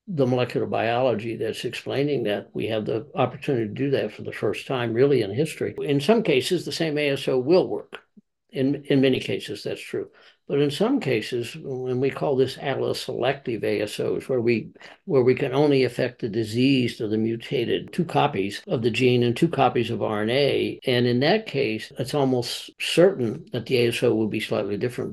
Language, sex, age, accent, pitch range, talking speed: English, male, 60-79, American, 120-145 Hz, 195 wpm